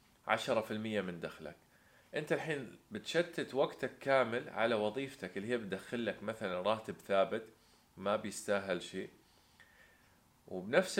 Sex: male